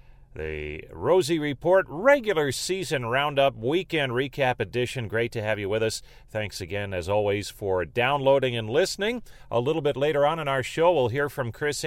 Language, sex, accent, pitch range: English, male, American, 100-140 Hz